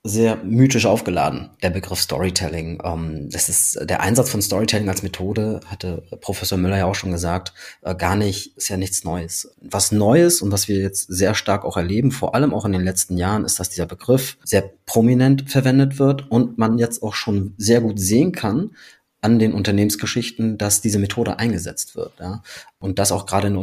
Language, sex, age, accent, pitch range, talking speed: German, male, 30-49, German, 95-120 Hz, 195 wpm